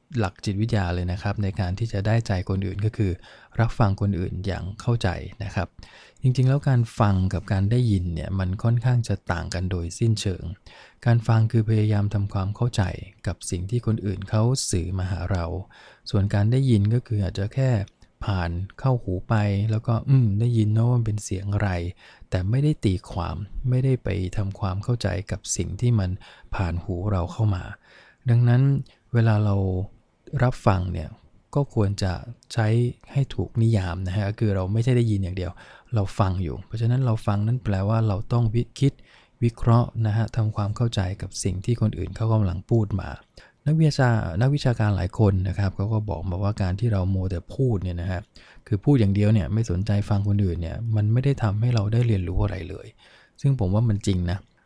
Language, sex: English, male